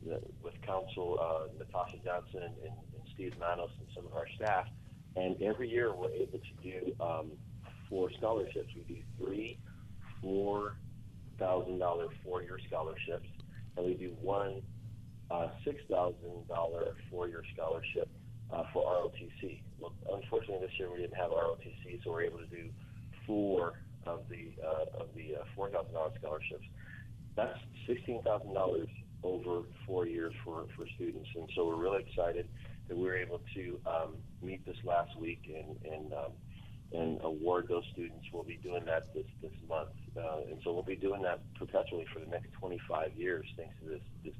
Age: 30-49